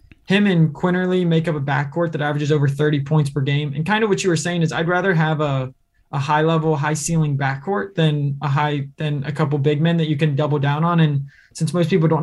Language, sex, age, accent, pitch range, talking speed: English, male, 20-39, American, 150-175 Hz, 250 wpm